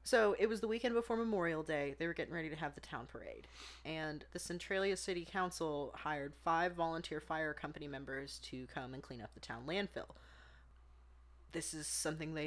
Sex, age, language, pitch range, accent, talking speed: female, 30-49, English, 135-165 Hz, American, 190 wpm